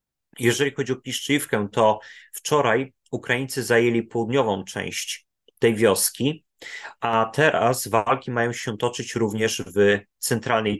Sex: male